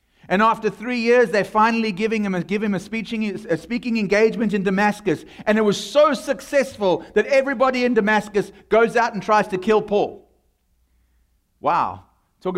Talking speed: 170 wpm